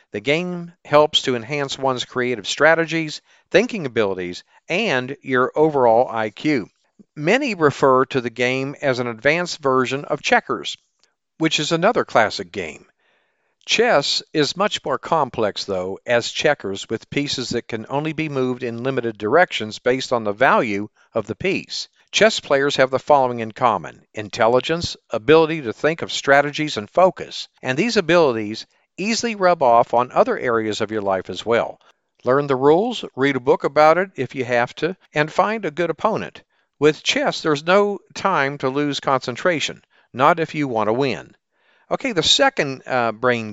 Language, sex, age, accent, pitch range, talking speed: English, male, 50-69, American, 120-160 Hz, 165 wpm